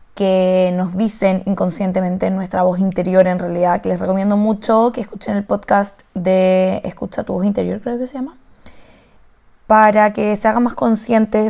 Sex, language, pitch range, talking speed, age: female, Spanish, 190-220 Hz, 165 wpm, 20-39